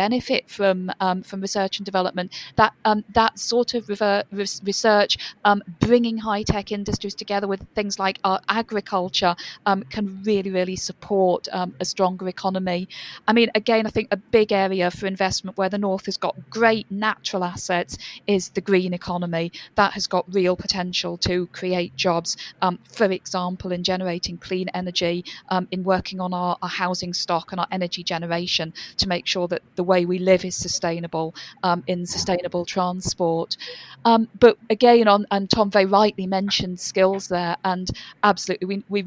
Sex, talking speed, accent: female, 170 wpm, British